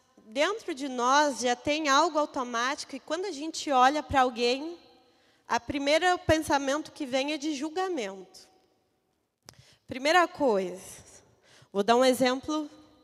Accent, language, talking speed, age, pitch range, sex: Brazilian, Portuguese, 130 wpm, 20-39, 230-295 Hz, female